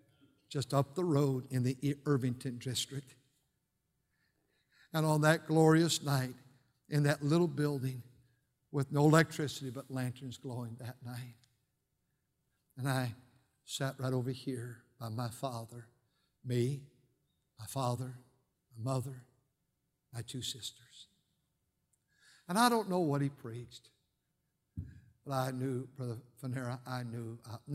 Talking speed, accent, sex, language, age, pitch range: 125 wpm, American, male, English, 60-79, 125-150 Hz